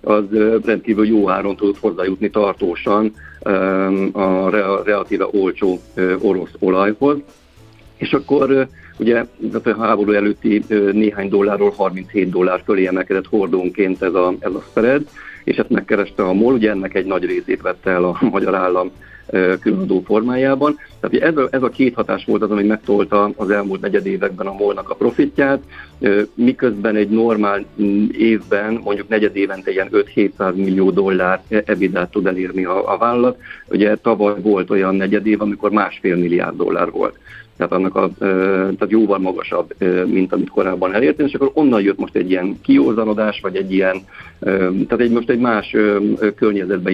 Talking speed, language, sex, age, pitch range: 150 wpm, Hungarian, male, 50-69, 95-110 Hz